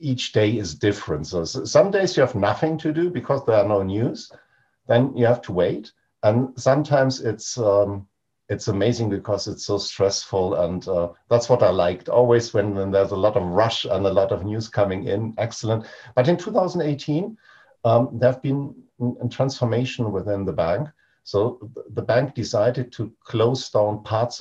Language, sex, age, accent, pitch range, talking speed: English, male, 50-69, German, 105-130 Hz, 180 wpm